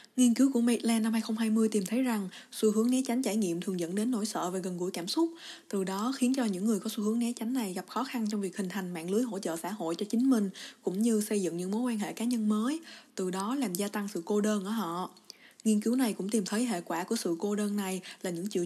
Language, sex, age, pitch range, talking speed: Vietnamese, female, 20-39, 195-230 Hz, 290 wpm